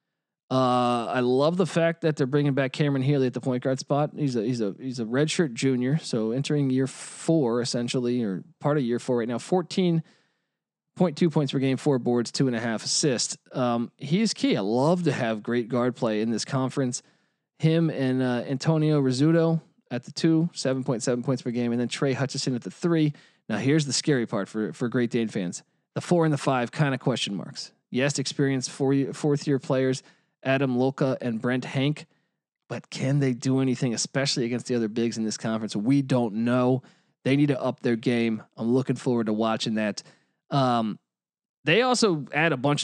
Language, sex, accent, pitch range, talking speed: English, male, American, 120-150 Hz, 200 wpm